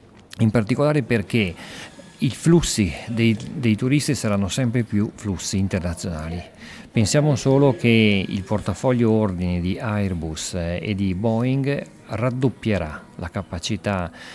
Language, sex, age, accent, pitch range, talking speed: English, male, 50-69, Italian, 95-125 Hz, 115 wpm